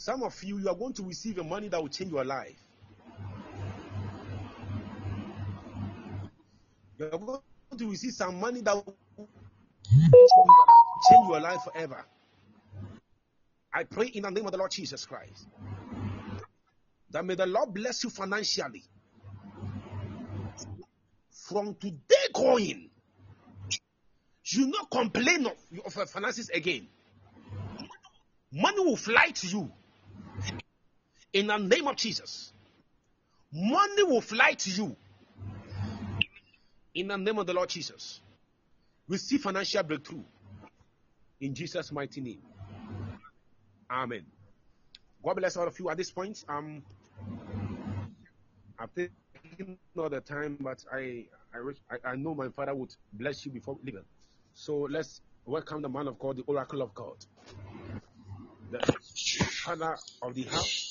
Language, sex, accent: Japanese, male, Nigerian